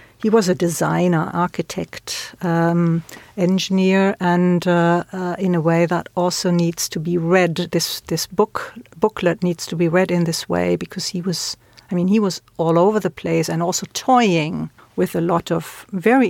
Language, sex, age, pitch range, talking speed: English, female, 60-79, 165-195 Hz, 180 wpm